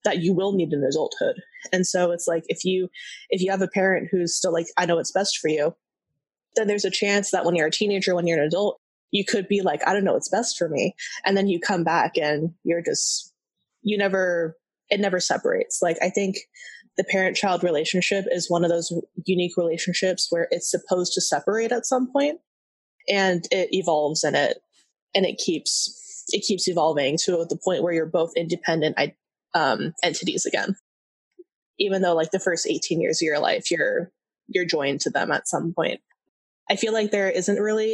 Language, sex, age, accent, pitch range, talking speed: English, female, 20-39, American, 170-200 Hz, 200 wpm